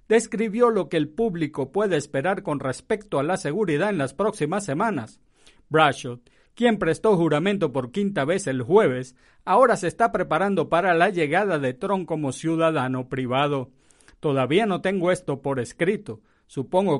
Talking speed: 155 wpm